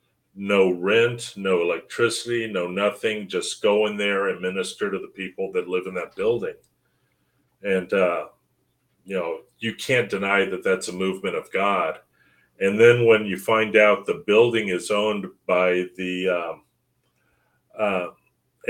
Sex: male